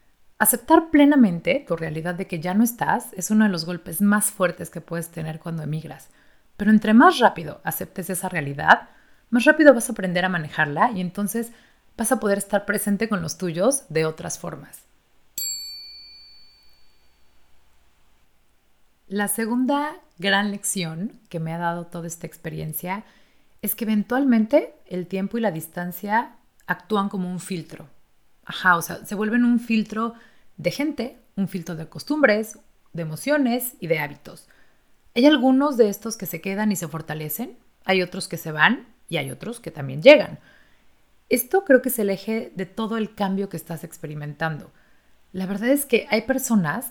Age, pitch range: 30-49, 170-230 Hz